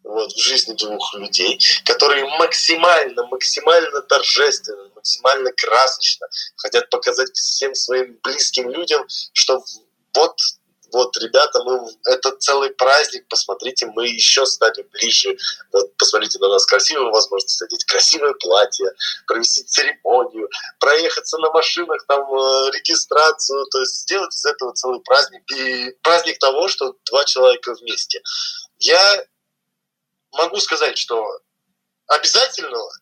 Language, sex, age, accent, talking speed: Russian, male, 20-39, native, 120 wpm